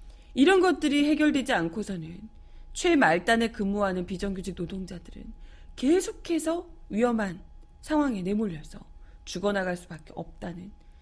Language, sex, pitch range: Korean, female, 185-285 Hz